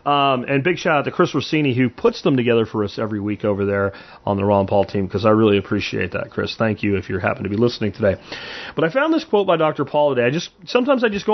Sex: male